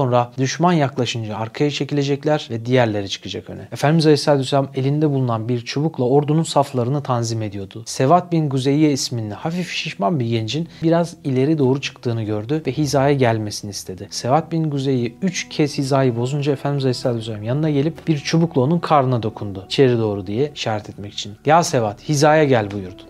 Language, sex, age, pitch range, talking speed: Turkish, male, 40-59, 115-150 Hz, 170 wpm